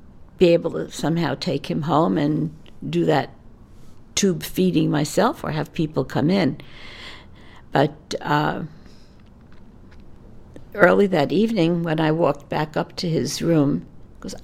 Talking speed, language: 135 wpm, English